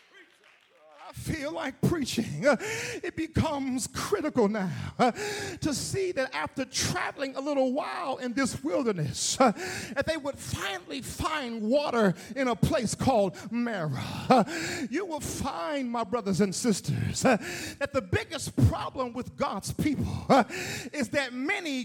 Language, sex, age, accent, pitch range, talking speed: English, male, 40-59, American, 250-320 Hz, 125 wpm